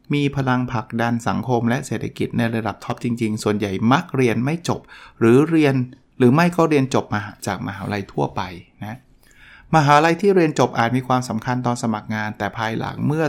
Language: Thai